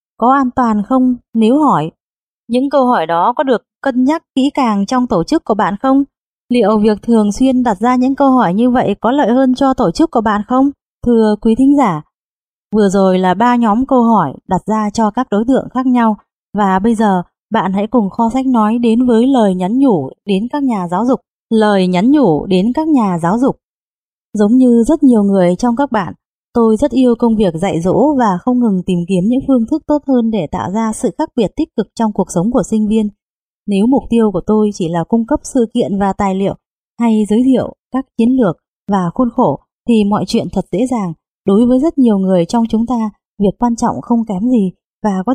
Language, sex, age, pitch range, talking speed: Vietnamese, female, 20-39, 205-255 Hz, 230 wpm